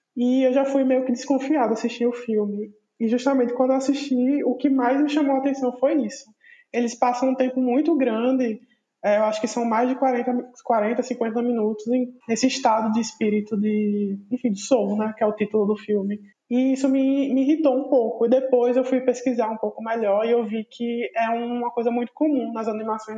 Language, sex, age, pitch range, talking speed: Portuguese, male, 20-39, 215-255 Hz, 215 wpm